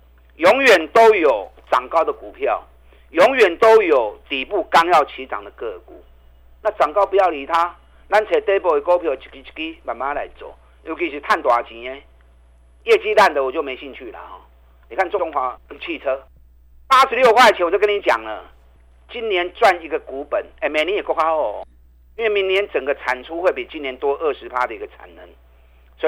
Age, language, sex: 50-69, Chinese, male